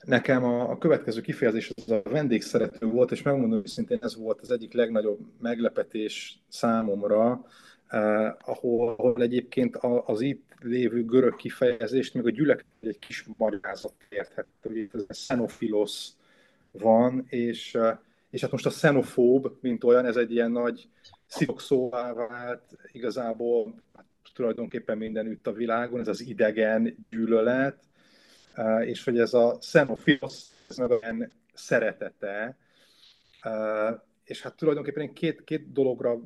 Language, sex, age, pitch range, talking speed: Hungarian, male, 30-49, 115-135 Hz, 125 wpm